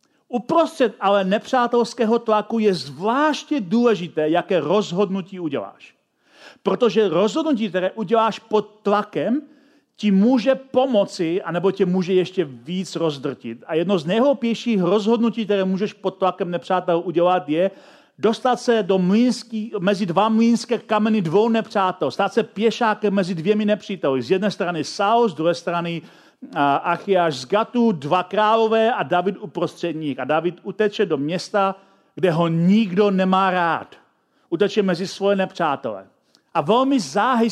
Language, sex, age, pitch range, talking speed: Czech, male, 40-59, 180-225 Hz, 140 wpm